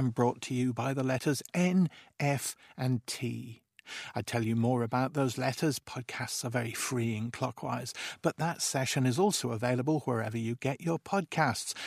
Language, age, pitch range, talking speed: English, 50-69, 115-140 Hz, 170 wpm